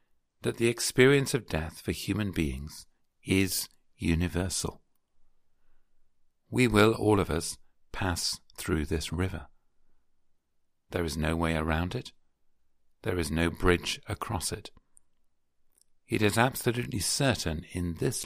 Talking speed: 120 wpm